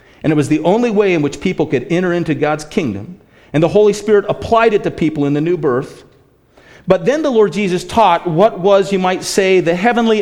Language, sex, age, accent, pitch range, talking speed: English, male, 40-59, American, 145-220 Hz, 230 wpm